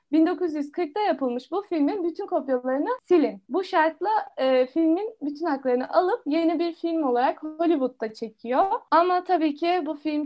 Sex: female